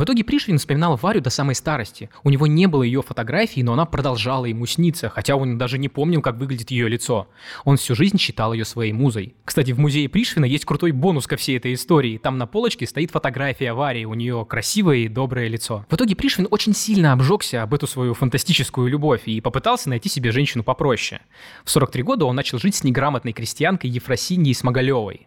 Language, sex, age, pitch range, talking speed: Russian, male, 20-39, 120-155 Hz, 205 wpm